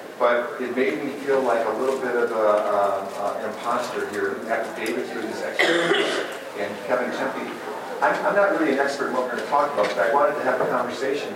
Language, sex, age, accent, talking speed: English, male, 40-59, American, 210 wpm